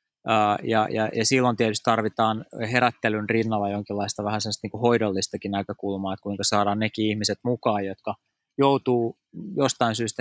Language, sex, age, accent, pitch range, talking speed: Finnish, male, 20-39, native, 115-140 Hz, 140 wpm